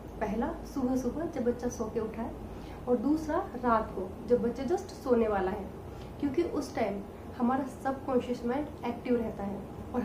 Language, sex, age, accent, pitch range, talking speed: Hindi, female, 30-49, native, 225-265 Hz, 175 wpm